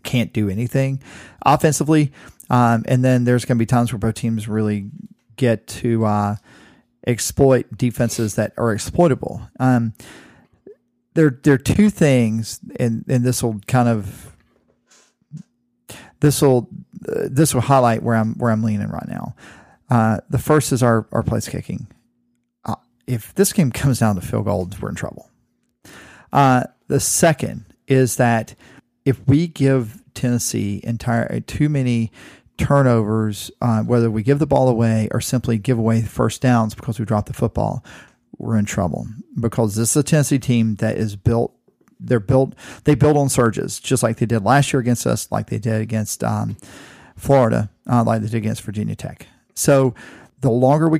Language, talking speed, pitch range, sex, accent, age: English, 170 wpm, 110-130 Hz, male, American, 40-59